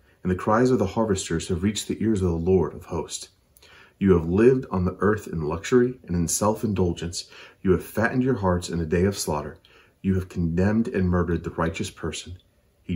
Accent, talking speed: American, 210 wpm